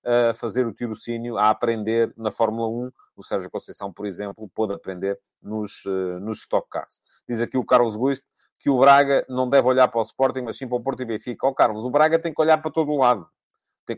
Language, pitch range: English, 120-175 Hz